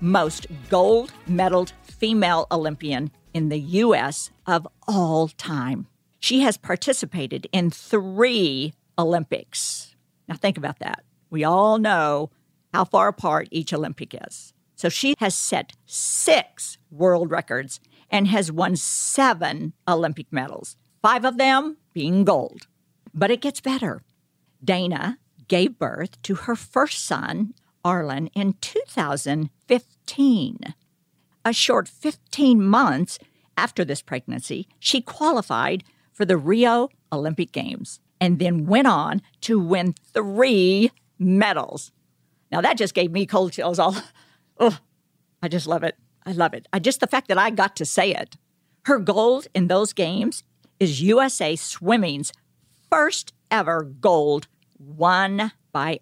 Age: 50-69